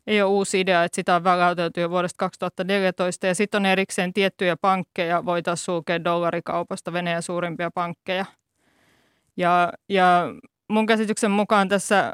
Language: Finnish